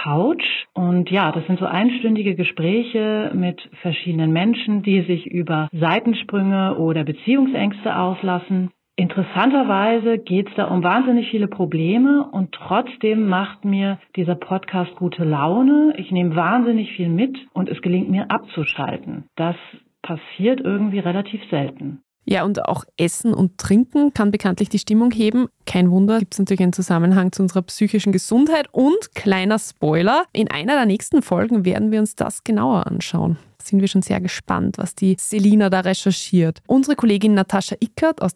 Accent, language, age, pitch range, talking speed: German, German, 40-59, 180-225 Hz, 155 wpm